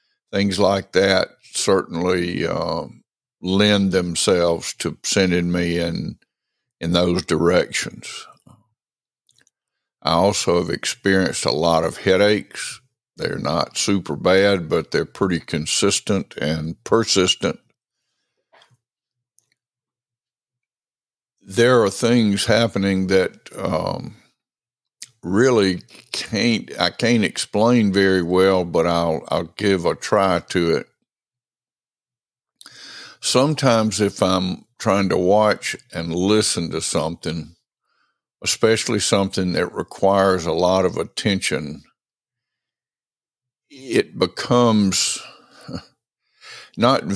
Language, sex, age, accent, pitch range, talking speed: English, male, 60-79, American, 90-115 Hz, 95 wpm